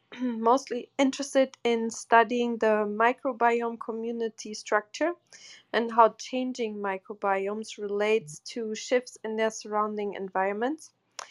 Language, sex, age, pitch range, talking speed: English, female, 20-39, 210-245 Hz, 100 wpm